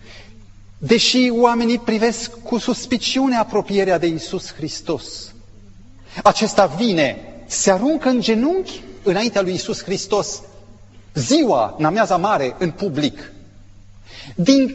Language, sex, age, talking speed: Romanian, male, 40-59, 100 wpm